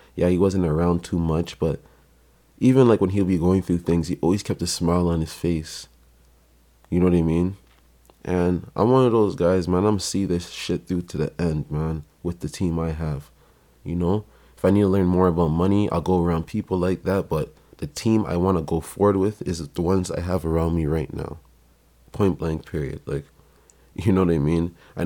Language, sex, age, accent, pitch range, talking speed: English, male, 20-39, American, 80-95 Hz, 225 wpm